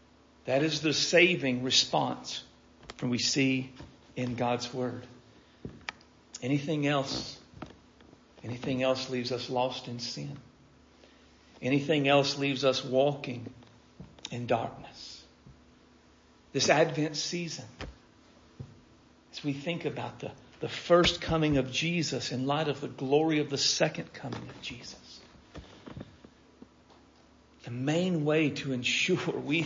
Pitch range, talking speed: 120-145 Hz, 115 wpm